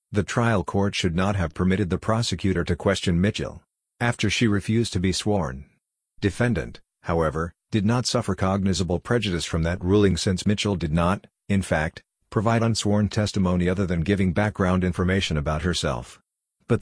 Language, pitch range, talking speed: English, 90-105 Hz, 160 wpm